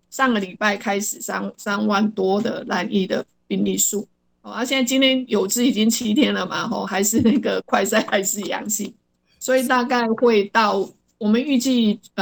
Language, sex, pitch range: Chinese, female, 200-235 Hz